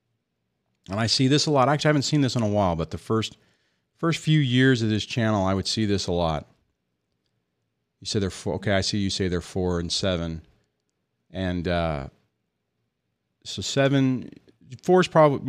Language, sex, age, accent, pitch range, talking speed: English, male, 40-59, American, 100-130 Hz, 190 wpm